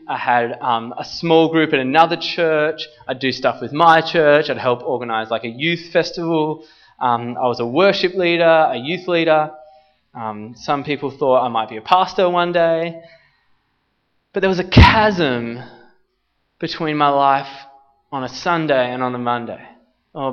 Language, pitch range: English, 125-170 Hz